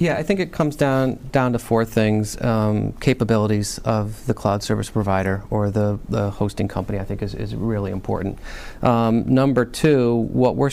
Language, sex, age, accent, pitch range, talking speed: English, male, 40-59, American, 110-125 Hz, 185 wpm